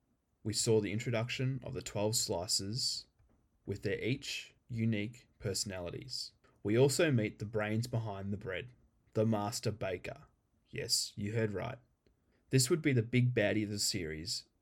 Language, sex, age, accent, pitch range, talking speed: English, male, 20-39, Australian, 105-125 Hz, 150 wpm